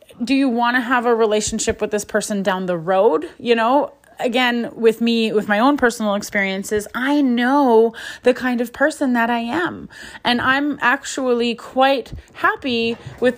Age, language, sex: 30-49, English, female